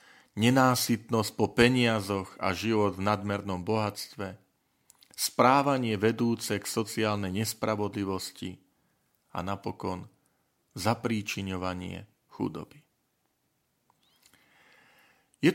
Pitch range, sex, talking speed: 100-120 Hz, male, 70 wpm